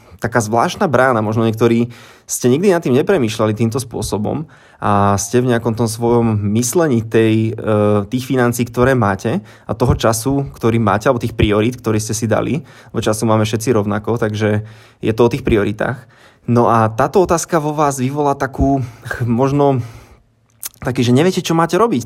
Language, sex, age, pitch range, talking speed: Slovak, male, 20-39, 110-125 Hz, 170 wpm